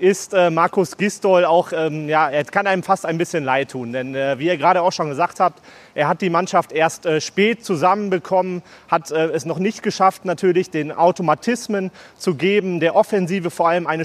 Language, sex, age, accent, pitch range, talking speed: German, male, 30-49, German, 155-185 Hz, 205 wpm